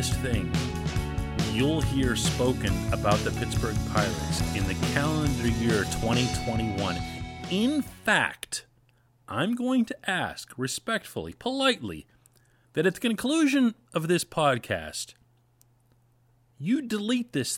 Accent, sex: American, male